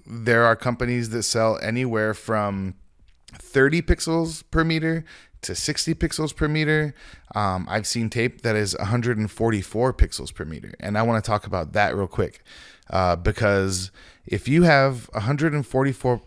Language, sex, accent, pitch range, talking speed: English, male, American, 105-140 Hz, 150 wpm